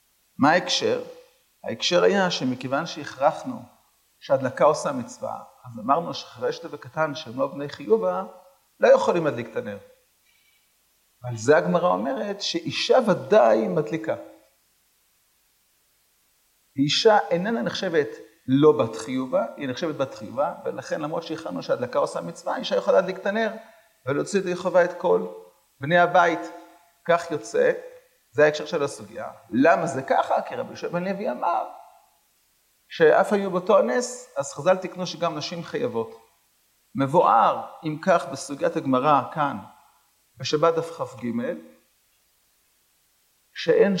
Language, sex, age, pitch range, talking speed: Hebrew, male, 40-59, 150-225 Hz, 120 wpm